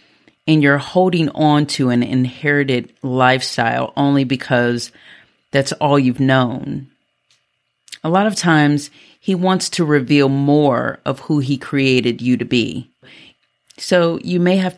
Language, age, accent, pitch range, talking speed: English, 40-59, American, 125-160 Hz, 140 wpm